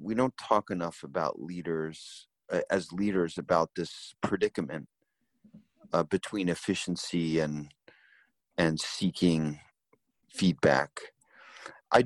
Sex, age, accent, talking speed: male, 40-59, American, 100 wpm